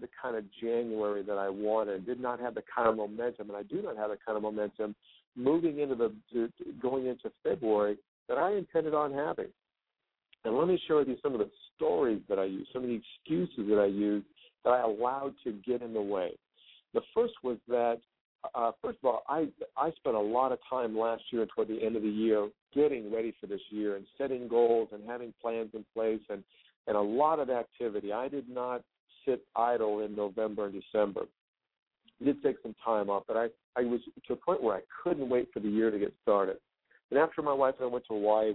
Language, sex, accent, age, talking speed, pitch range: English, male, American, 50-69, 220 wpm, 105-130 Hz